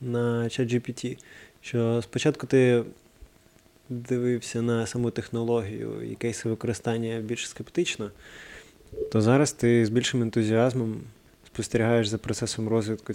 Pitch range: 110-125 Hz